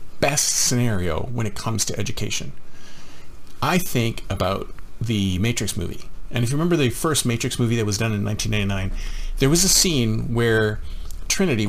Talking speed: 165 wpm